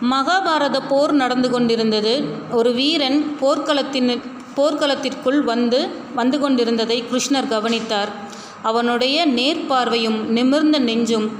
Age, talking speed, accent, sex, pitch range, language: 30-49, 90 wpm, native, female, 235-280 Hz, Tamil